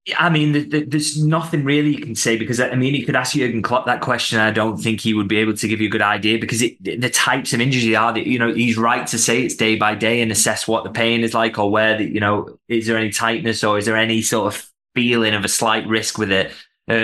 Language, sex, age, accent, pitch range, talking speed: English, male, 20-39, British, 110-120 Hz, 290 wpm